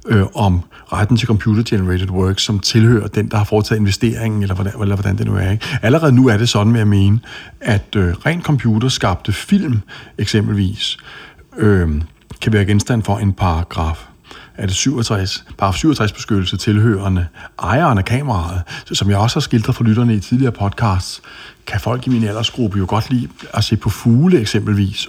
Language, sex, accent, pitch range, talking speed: Danish, male, native, 100-130 Hz, 180 wpm